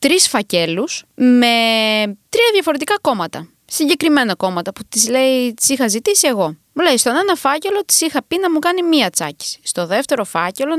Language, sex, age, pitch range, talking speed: Greek, female, 20-39, 225-365 Hz, 165 wpm